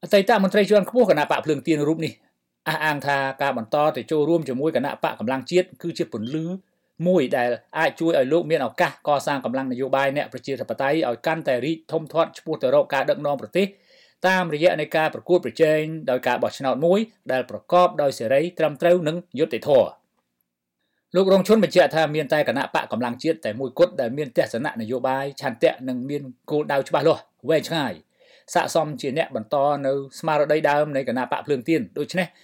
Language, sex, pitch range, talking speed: English, male, 135-170 Hz, 35 wpm